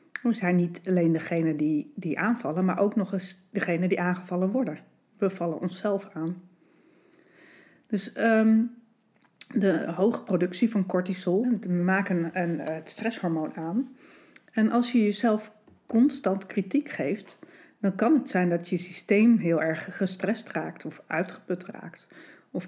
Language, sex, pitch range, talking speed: Dutch, female, 175-220 Hz, 145 wpm